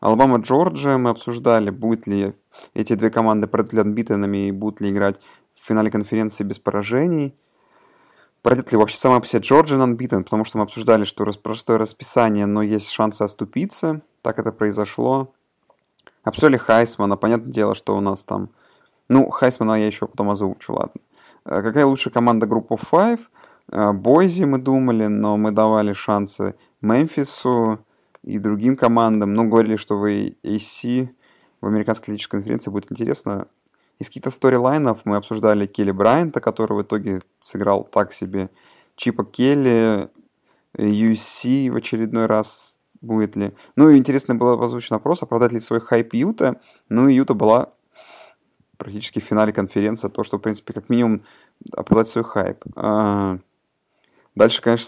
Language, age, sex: Russian, 20-39, male